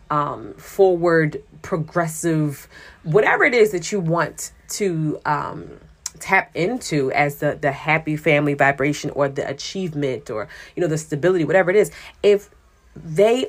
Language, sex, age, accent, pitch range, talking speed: English, female, 30-49, American, 145-175 Hz, 140 wpm